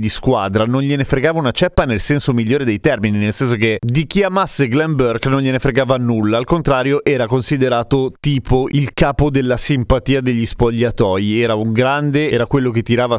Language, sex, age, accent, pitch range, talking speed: Italian, male, 30-49, native, 115-155 Hz, 190 wpm